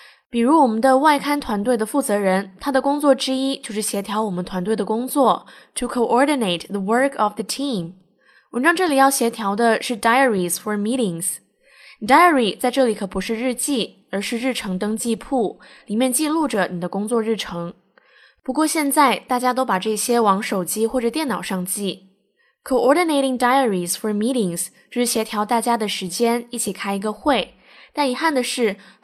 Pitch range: 200-260 Hz